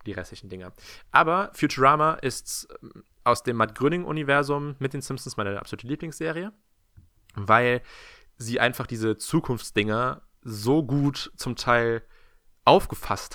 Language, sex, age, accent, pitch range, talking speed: German, male, 20-39, German, 105-135 Hz, 115 wpm